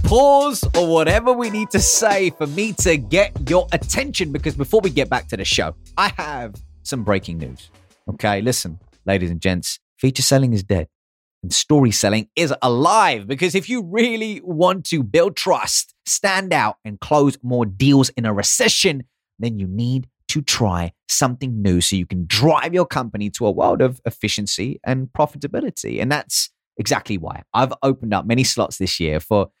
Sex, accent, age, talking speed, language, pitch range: male, British, 30-49, 180 wpm, English, 100-145 Hz